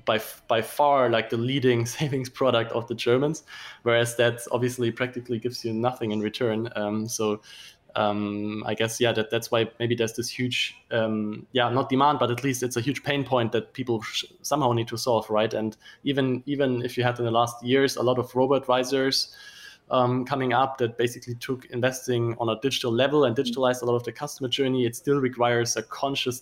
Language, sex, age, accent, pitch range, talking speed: English, male, 20-39, German, 115-125 Hz, 205 wpm